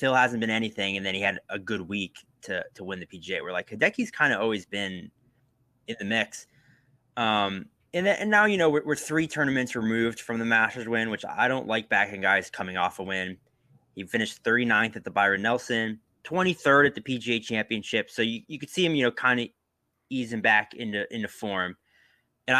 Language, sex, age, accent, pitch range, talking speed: English, male, 20-39, American, 105-135 Hz, 210 wpm